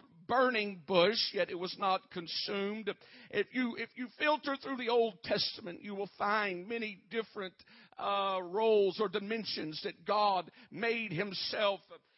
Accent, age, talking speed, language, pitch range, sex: American, 50-69, 145 wpm, English, 200-235 Hz, male